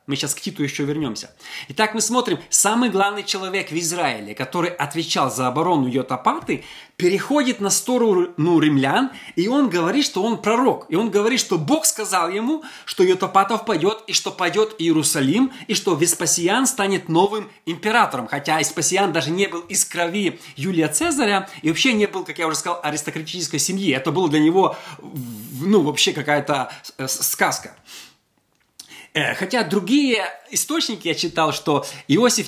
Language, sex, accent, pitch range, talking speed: Russian, male, native, 155-215 Hz, 155 wpm